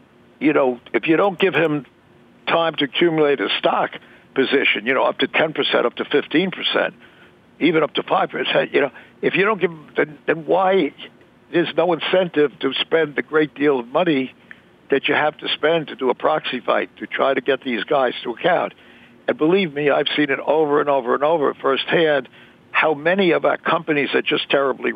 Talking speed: 200 wpm